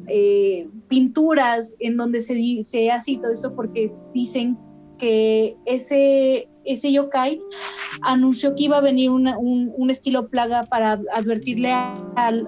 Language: Spanish